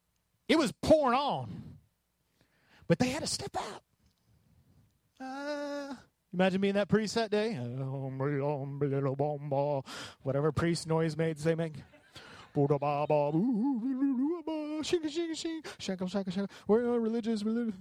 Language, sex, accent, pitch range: English, male, American, 140-220 Hz